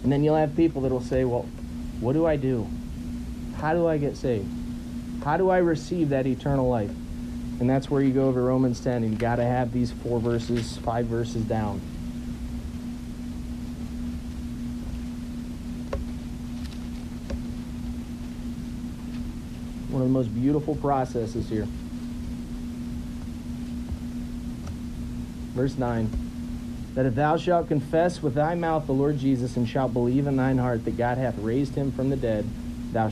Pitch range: 80-135 Hz